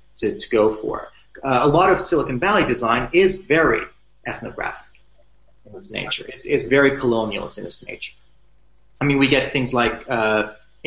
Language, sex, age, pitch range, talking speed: English, male, 30-49, 115-145 Hz, 170 wpm